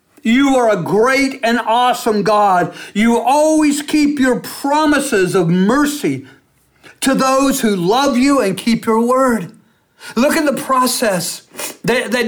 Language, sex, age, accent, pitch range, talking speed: English, male, 50-69, American, 225-280 Hz, 135 wpm